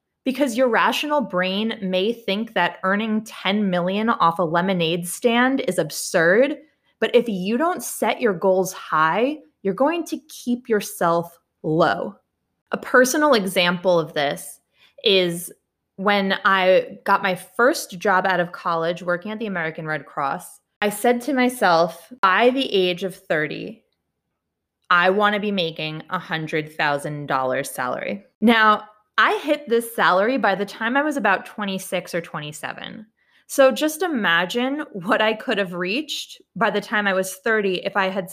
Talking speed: 155 wpm